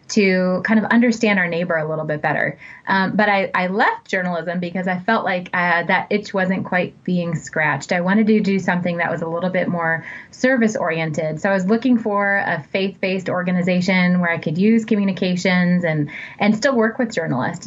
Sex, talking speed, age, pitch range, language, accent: female, 200 wpm, 20-39, 170-210 Hz, English, American